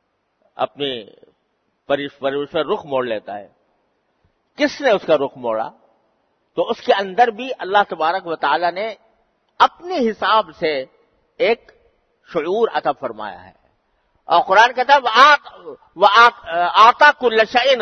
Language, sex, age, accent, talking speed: English, male, 50-69, Indian, 120 wpm